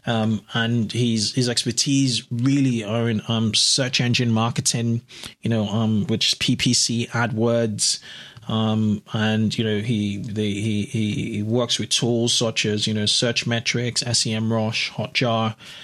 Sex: male